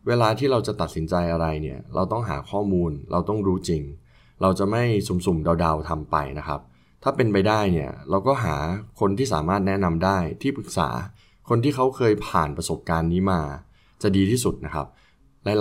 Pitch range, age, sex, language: 80-105 Hz, 20-39, male, Thai